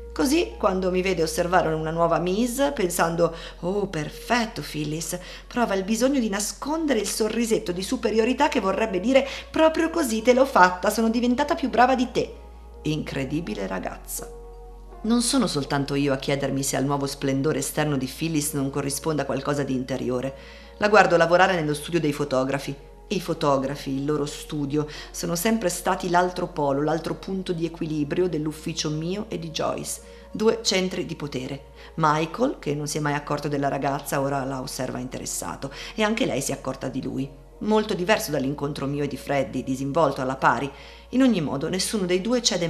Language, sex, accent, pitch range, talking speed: Italian, female, native, 140-190 Hz, 175 wpm